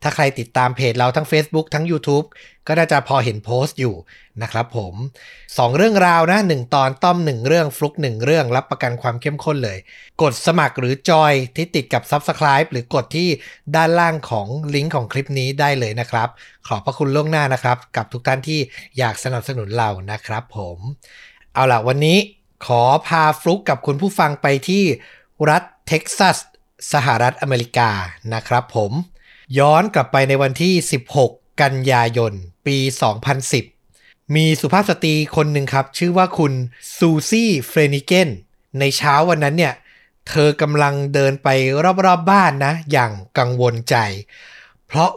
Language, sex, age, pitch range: Thai, male, 60-79, 125-165 Hz